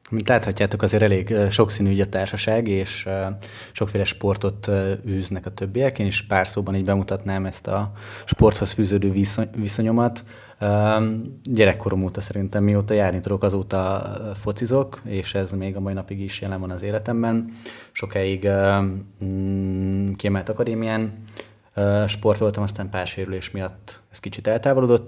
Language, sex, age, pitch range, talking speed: Hungarian, male, 20-39, 95-110 Hz, 150 wpm